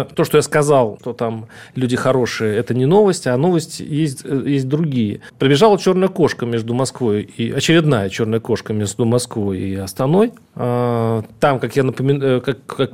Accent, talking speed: native, 160 wpm